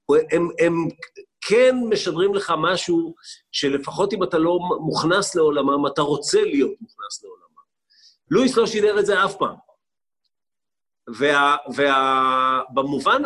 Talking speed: 115 wpm